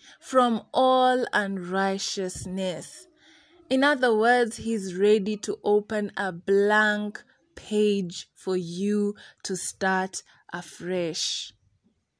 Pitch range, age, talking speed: 190-240 Hz, 20-39, 90 wpm